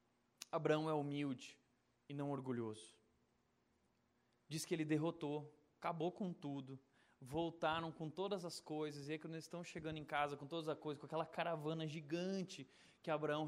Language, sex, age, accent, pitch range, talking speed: Portuguese, male, 20-39, Brazilian, 145-180 Hz, 160 wpm